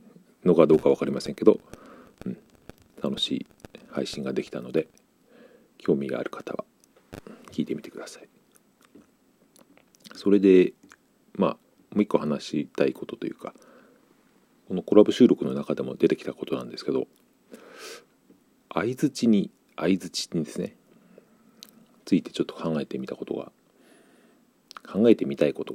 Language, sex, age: Japanese, male, 40-59